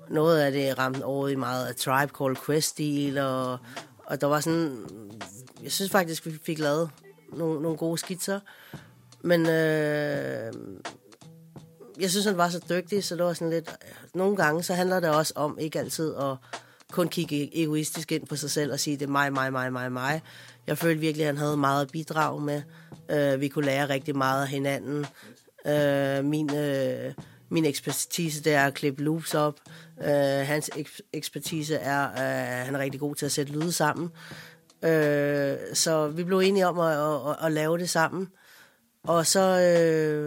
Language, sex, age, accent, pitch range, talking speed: Danish, female, 30-49, native, 140-165 Hz, 180 wpm